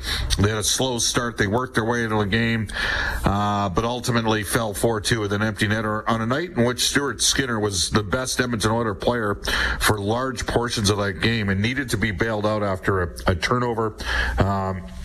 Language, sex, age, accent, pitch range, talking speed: English, male, 50-69, American, 105-125 Hz, 205 wpm